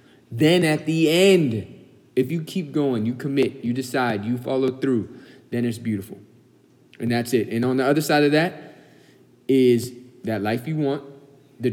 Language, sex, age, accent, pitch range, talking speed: English, male, 20-39, American, 125-150 Hz, 175 wpm